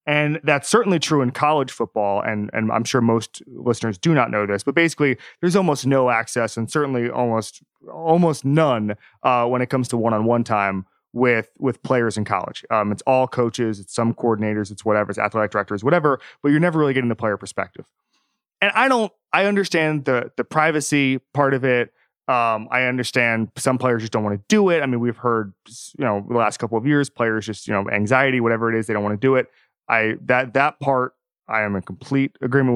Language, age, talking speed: English, 20-39, 215 wpm